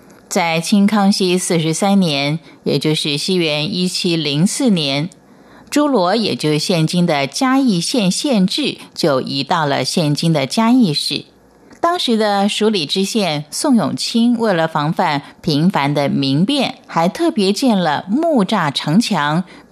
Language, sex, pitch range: Chinese, female, 155-225 Hz